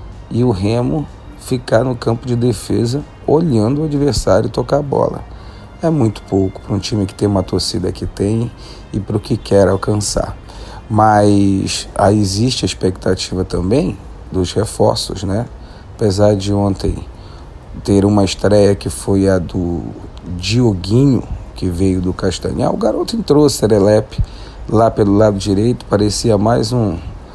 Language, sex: Portuguese, male